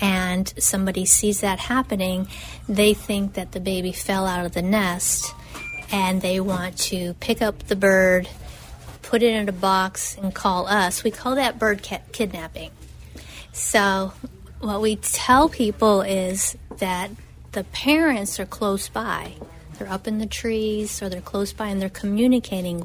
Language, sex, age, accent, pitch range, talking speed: English, female, 40-59, American, 190-225 Hz, 160 wpm